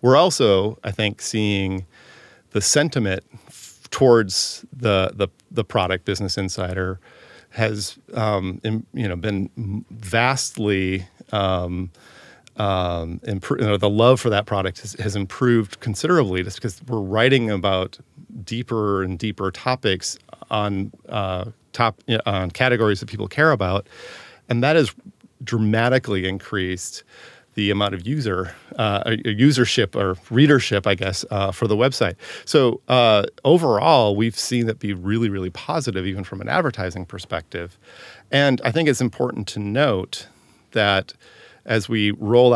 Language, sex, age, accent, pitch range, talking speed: English, male, 40-59, American, 95-115 Hz, 140 wpm